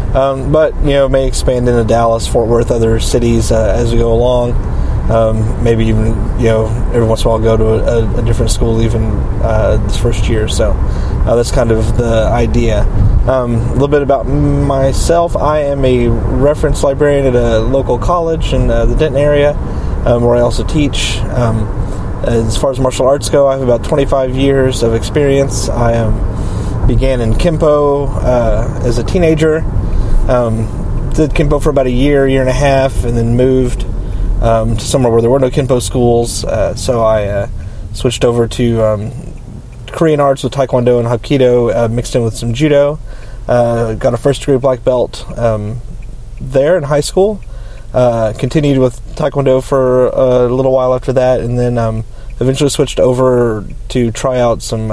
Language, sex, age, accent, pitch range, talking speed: English, male, 30-49, American, 115-135 Hz, 185 wpm